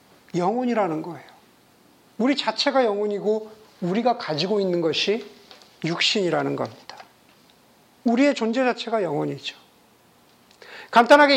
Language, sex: Korean, male